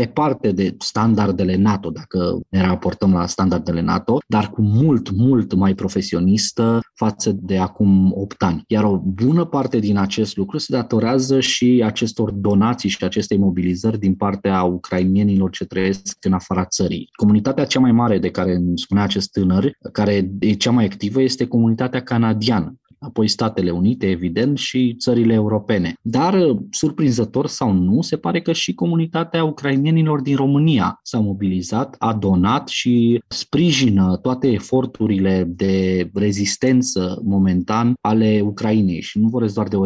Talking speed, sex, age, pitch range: 150 wpm, male, 20-39, 95-125 Hz